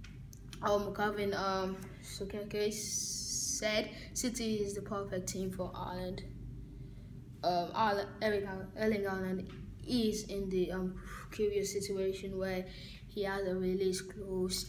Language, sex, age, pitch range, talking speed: English, female, 10-29, 175-200 Hz, 105 wpm